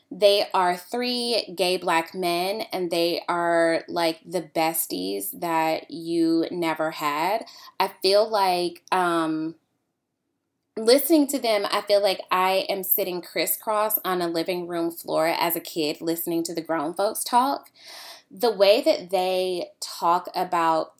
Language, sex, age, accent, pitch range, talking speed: English, female, 10-29, American, 170-215 Hz, 145 wpm